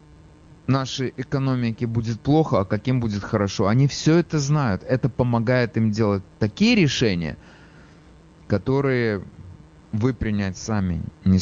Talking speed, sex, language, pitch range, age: 120 wpm, male, English, 100-140 Hz, 30-49